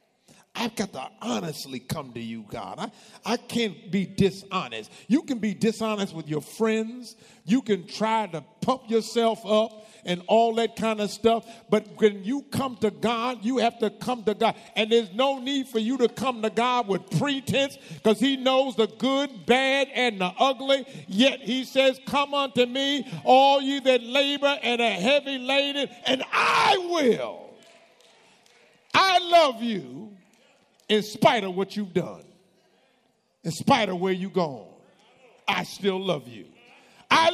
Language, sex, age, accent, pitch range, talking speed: English, male, 50-69, American, 180-265 Hz, 165 wpm